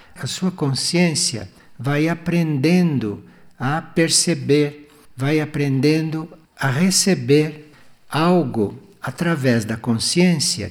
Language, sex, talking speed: Portuguese, male, 85 wpm